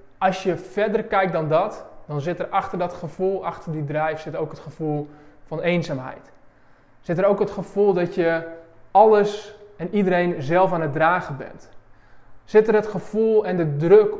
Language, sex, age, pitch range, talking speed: Dutch, male, 20-39, 155-195 Hz, 180 wpm